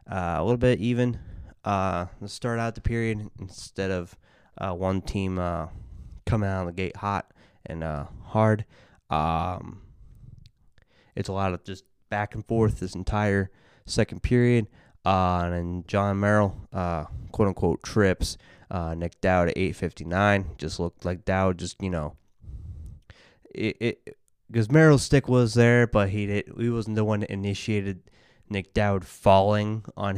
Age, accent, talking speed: 20-39, American, 160 wpm